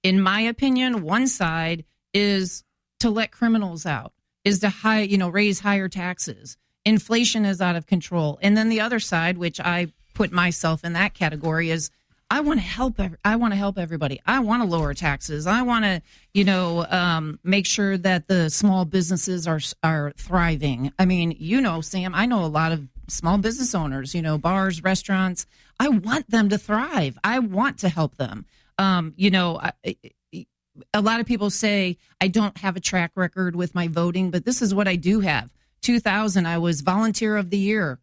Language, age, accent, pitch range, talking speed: English, 40-59, American, 170-215 Hz, 195 wpm